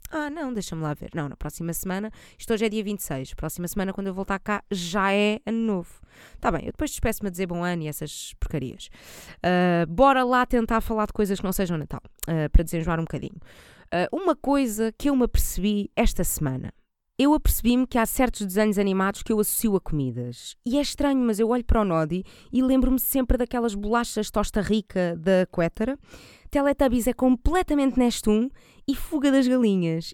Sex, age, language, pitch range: female, 20-39, Portuguese, 195-265 Hz